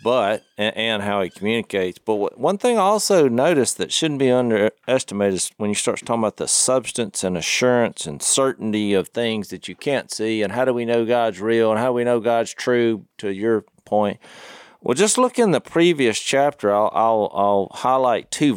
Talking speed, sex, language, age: 195 wpm, male, English, 40-59